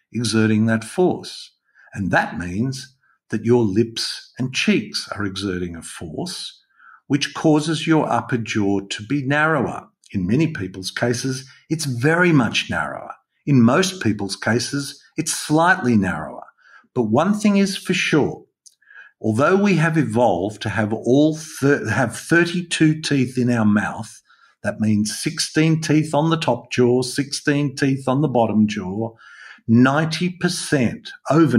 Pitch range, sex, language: 110-150 Hz, male, English